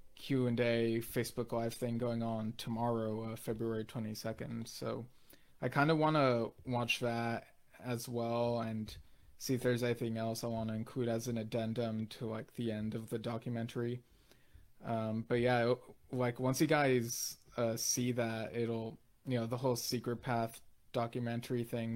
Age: 20-39